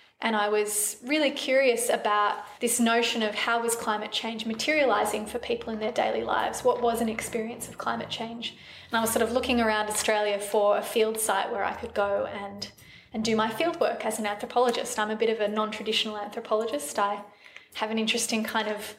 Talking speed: 210 wpm